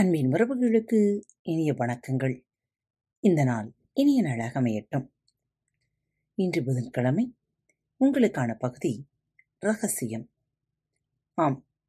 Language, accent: Tamil, native